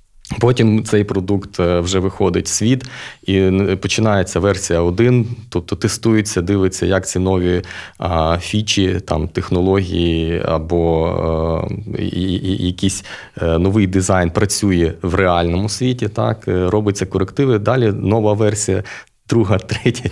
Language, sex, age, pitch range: Ukrainian, male, 20-39, 90-110 Hz